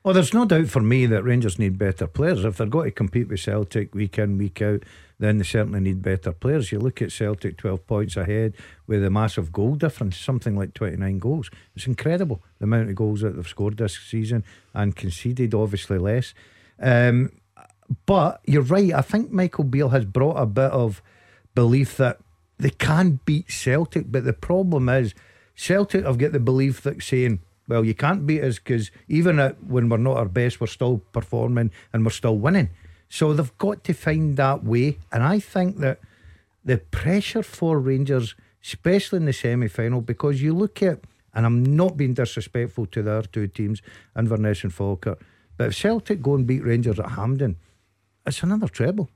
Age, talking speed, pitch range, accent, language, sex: 50-69, 190 wpm, 105-140 Hz, British, English, male